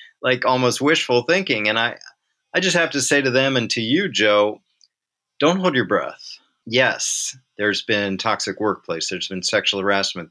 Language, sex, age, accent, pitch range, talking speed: English, male, 40-59, American, 100-135 Hz, 175 wpm